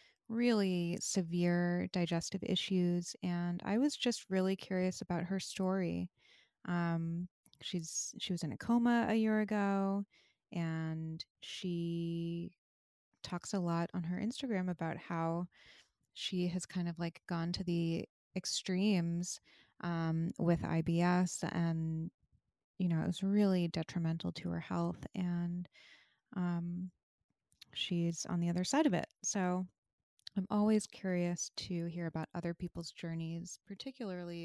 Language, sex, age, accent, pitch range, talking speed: English, female, 20-39, American, 170-195 Hz, 135 wpm